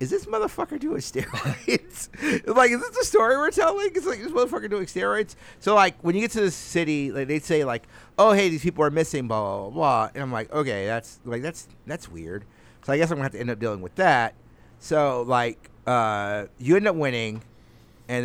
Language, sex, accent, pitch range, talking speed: English, male, American, 115-155 Hz, 225 wpm